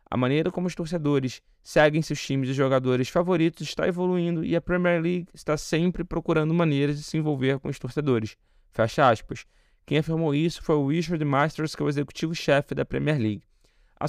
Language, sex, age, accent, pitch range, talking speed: Portuguese, male, 20-39, Brazilian, 135-165 Hz, 185 wpm